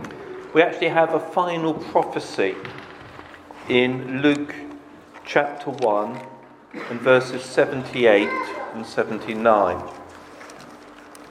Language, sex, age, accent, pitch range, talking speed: English, male, 50-69, British, 125-165 Hz, 70 wpm